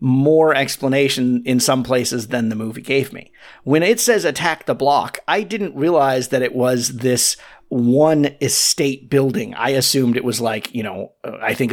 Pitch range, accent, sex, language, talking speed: 135-190 Hz, American, male, English, 180 wpm